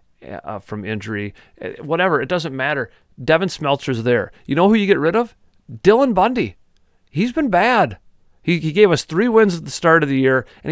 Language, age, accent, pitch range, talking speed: English, 40-59, American, 120-155 Hz, 195 wpm